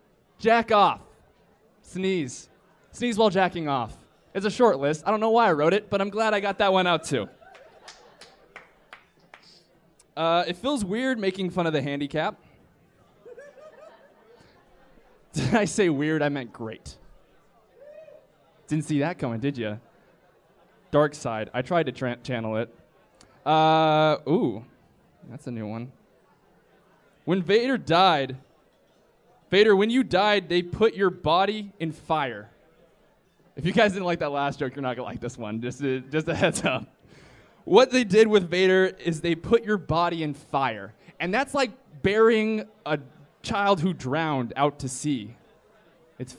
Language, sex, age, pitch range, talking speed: English, male, 20-39, 140-200 Hz, 155 wpm